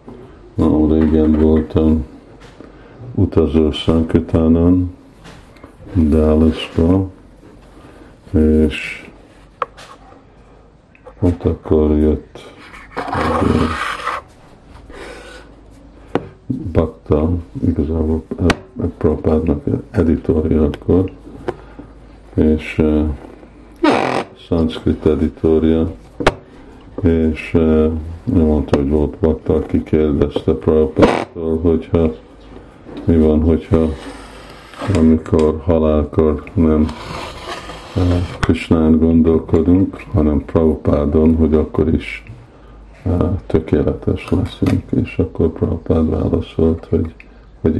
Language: Hungarian